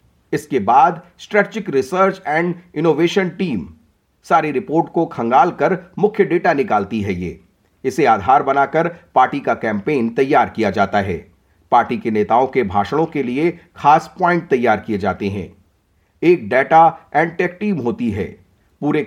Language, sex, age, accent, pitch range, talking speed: Hindi, male, 40-59, native, 135-190 Hz, 145 wpm